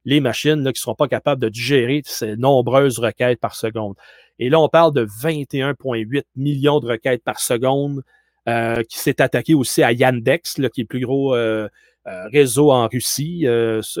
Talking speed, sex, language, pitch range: 195 wpm, male, French, 115-150 Hz